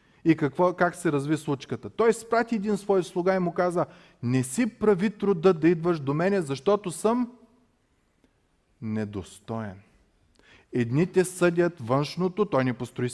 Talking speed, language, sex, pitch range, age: 140 wpm, Bulgarian, male, 120-160 Hz, 30-49